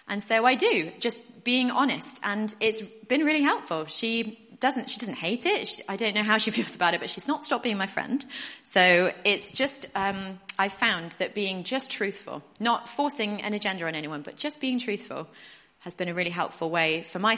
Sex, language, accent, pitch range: female, English, British, 185-265 Hz